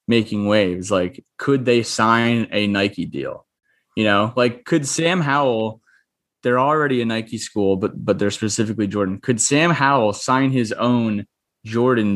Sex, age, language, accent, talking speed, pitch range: male, 20-39, English, American, 160 wpm, 100-130 Hz